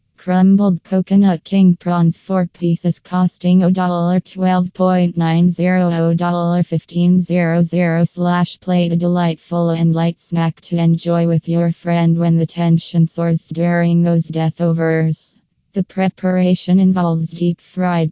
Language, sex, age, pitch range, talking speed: English, female, 20-39, 165-175 Hz, 115 wpm